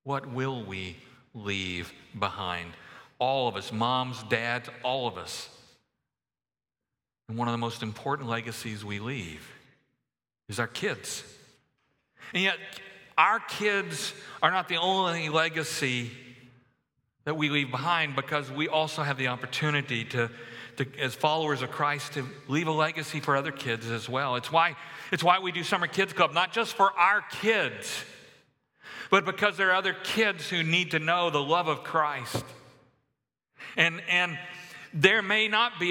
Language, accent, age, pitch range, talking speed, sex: English, American, 50-69, 125-170 Hz, 155 wpm, male